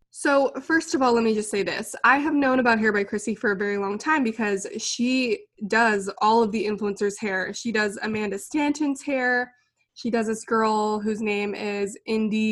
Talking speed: 200 wpm